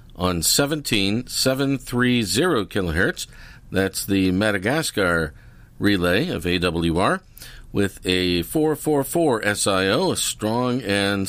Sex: male